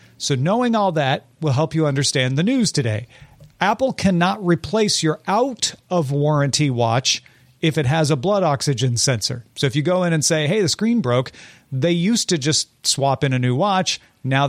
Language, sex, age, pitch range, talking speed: English, male, 40-59, 130-175 Hz, 195 wpm